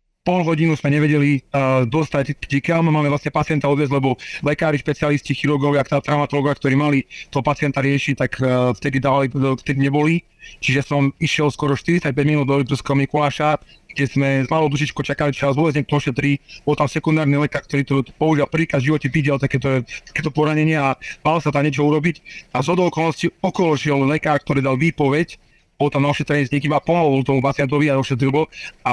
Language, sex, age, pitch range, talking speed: Slovak, male, 30-49, 140-155 Hz, 185 wpm